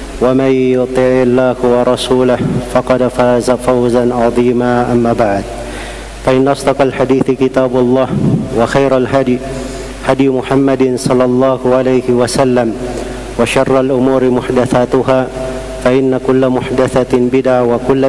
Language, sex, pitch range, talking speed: Indonesian, male, 125-130 Hz, 105 wpm